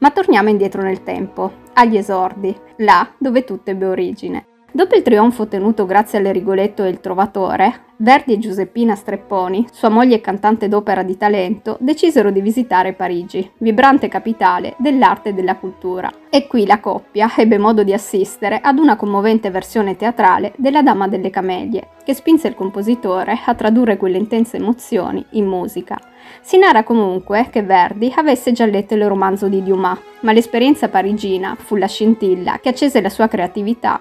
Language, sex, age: Italian, female, 20-39